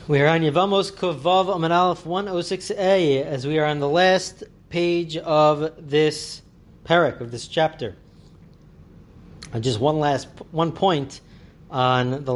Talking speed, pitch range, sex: 140 wpm, 120-150 Hz, male